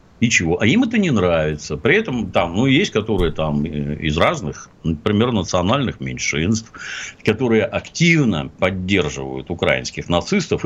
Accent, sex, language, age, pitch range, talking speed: native, male, Russian, 60-79, 85-135 Hz, 135 wpm